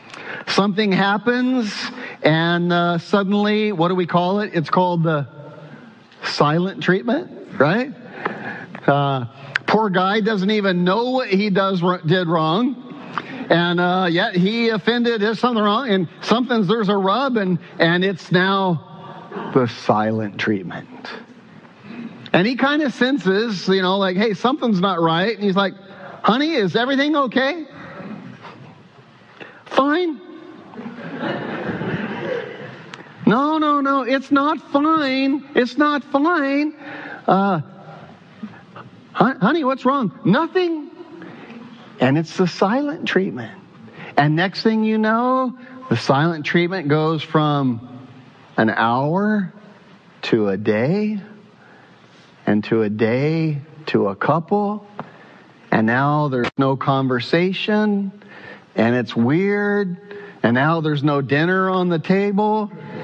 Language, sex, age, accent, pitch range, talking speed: English, male, 40-59, American, 170-235 Hz, 120 wpm